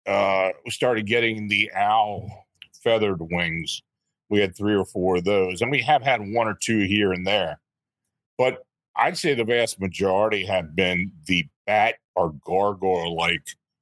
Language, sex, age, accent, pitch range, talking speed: English, male, 40-59, American, 95-110 Hz, 160 wpm